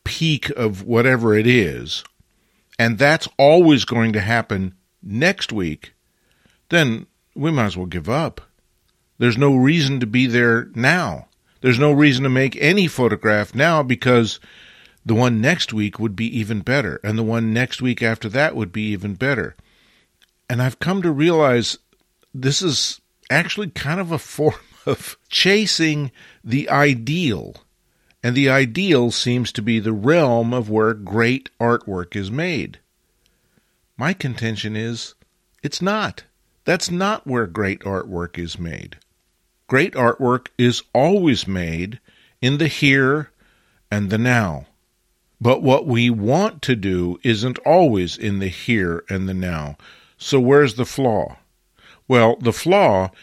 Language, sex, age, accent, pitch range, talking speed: English, male, 50-69, American, 110-145 Hz, 145 wpm